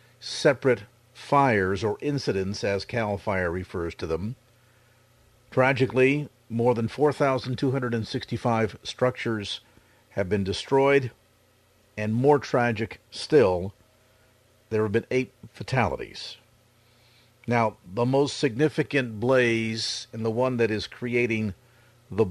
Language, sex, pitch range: English, male, 105-125 Hz